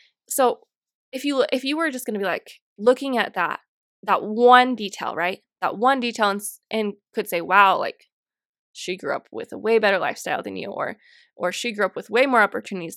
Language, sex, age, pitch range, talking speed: English, female, 20-39, 205-250 Hz, 215 wpm